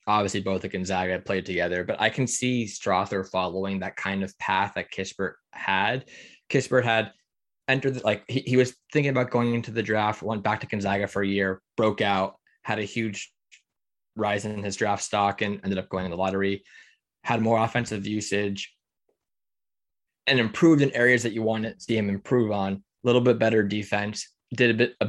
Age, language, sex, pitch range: 20-39, English, male, 100-115 Hz